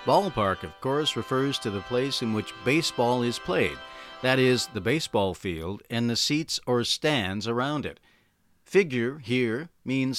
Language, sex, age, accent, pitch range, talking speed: English, male, 50-69, American, 105-130 Hz, 160 wpm